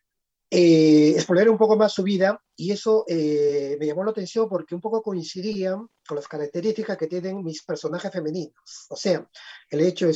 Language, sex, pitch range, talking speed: Spanish, male, 155-190 Hz, 185 wpm